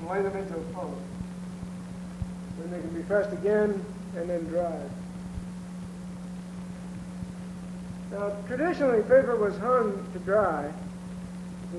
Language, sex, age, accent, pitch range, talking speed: English, male, 50-69, American, 180-200 Hz, 115 wpm